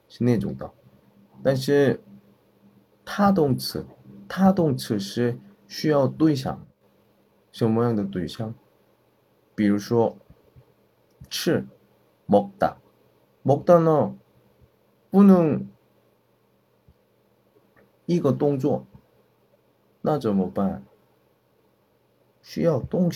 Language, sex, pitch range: Chinese, male, 95-160 Hz